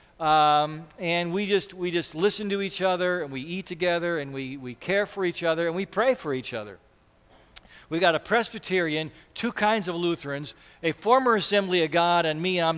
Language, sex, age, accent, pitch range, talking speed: English, male, 50-69, American, 140-190 Hz, 200 wpm